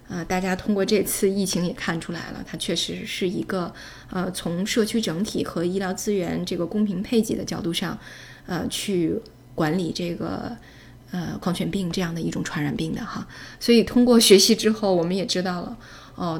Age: 20-39